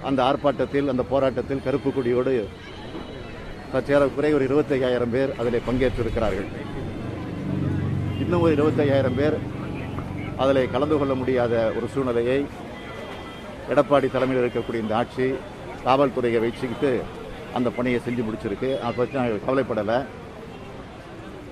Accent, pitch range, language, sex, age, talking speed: native, 120-140 Hz, Tamil, male, 50-69, 105 wpm